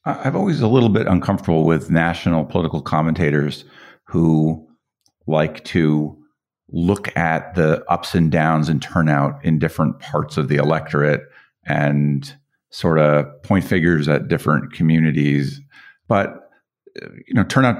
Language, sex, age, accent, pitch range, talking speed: English, male, 50-69, American, 75-100 Hz, 130 wpm